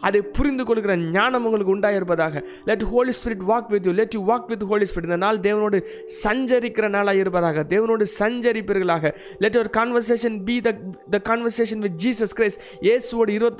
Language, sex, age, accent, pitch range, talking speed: Tamil, male, 20-39, native, 195-235 Hz, 160 wpm